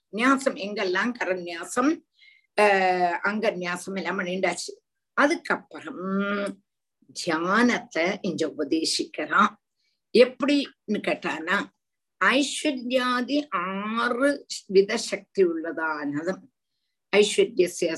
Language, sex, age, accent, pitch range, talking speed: Tamil, female, 50-69, native, 195-275 Hz, 55 wpm